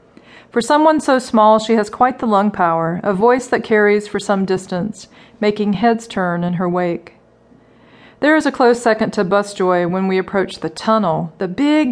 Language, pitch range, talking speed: English, 185-235 Hz, 190 wpm